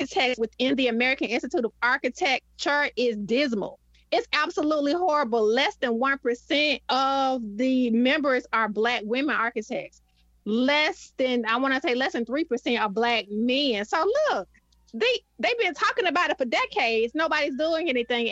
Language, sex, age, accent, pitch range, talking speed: English, female, 30-49, American, 220-270 Hz, 145 wpm